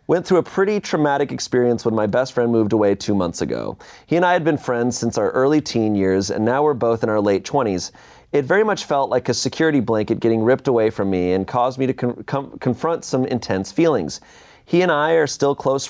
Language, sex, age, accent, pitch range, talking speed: English, male, 30-49, American, 105-135 Hz, 230 wpm